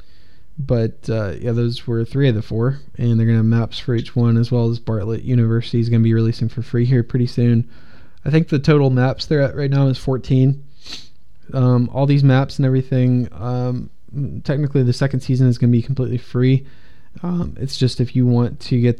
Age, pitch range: 20-39, 115-130 Hz